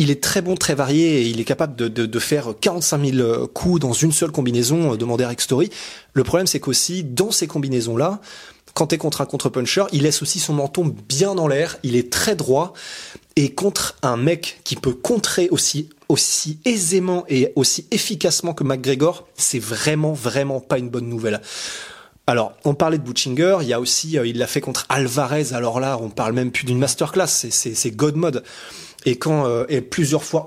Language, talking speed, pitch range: French, 205 wpm, 125-165 Hz